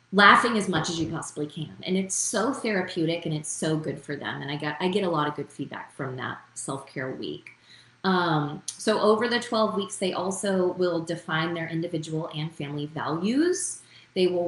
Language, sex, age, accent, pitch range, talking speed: English, female, 20-39, American, 155-200 Hz, 200 wpm